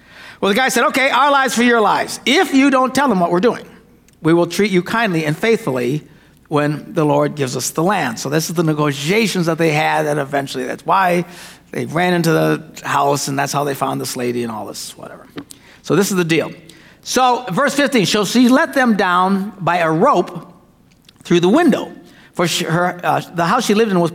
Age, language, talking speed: 60-79, English, 215 wpm